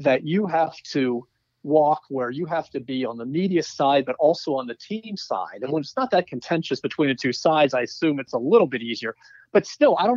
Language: English